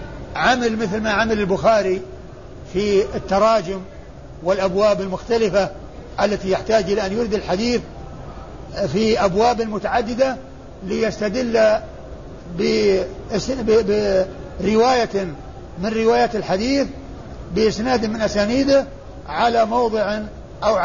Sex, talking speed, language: male, 85 wpm, Arabic